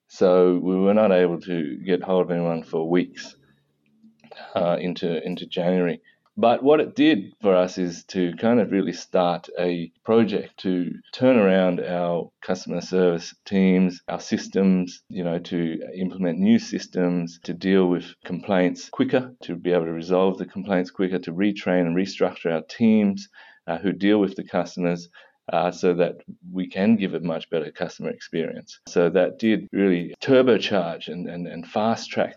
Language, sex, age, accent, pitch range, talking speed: English, male, 30-49, Australian, 85-95 Hz, 170 wpm